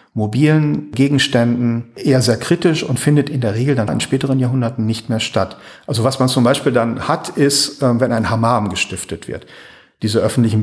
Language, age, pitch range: German, 40-59, 105-130 Hz